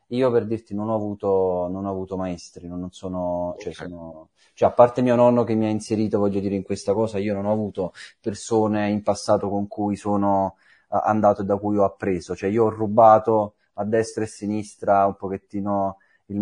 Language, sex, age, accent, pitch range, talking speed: Italian, male, 20-39, native, 95-110 Hz, 205 wpm